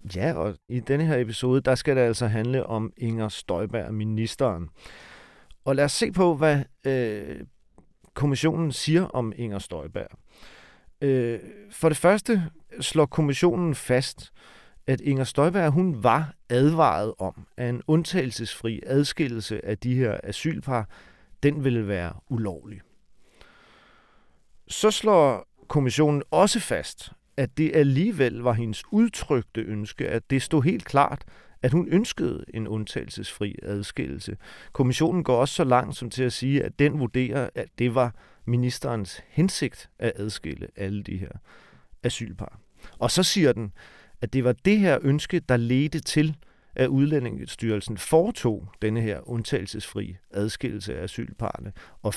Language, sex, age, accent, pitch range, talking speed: Danish, male, 40-59, native, 110-150 Hz, 140 wpm